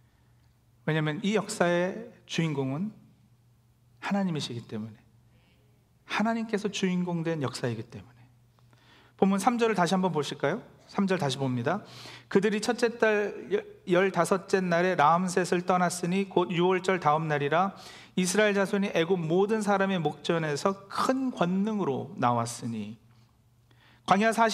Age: 40-59